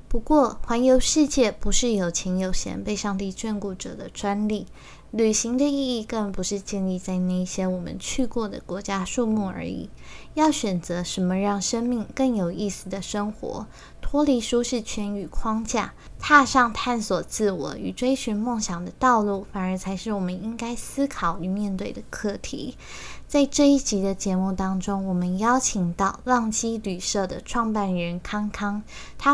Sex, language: female, Chinese